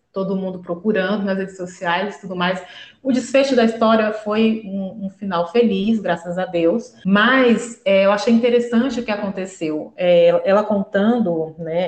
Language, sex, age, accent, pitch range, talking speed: Portuguese, female, 20-39, Brazilian, 180-250 Hz, 155 wpm